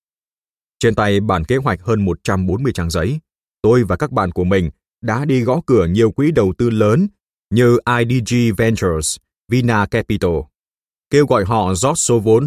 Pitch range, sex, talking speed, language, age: 90-125 Hz, male, 170 wpm, Vietnamese, 20-39